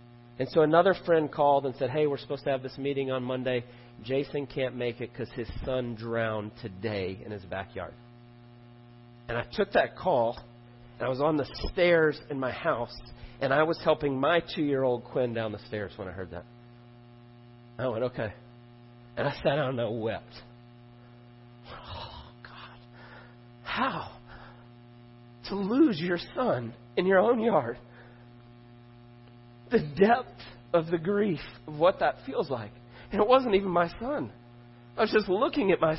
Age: 40-59